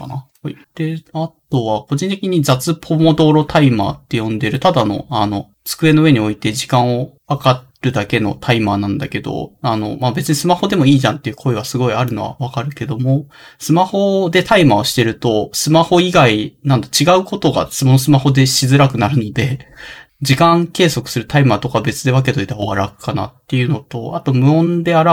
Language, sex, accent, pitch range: Japanese, male, native, 115-150 Hz